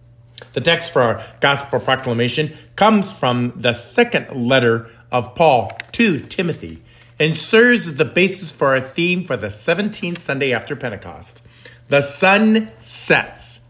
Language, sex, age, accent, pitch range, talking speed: English, male, 50-69, American, 120-160 Hz, 140 wpm